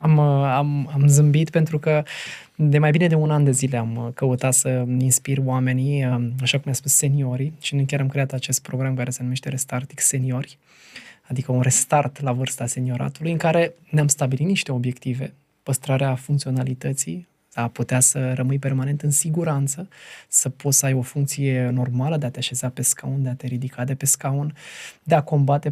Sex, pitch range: male, 130-150 Hz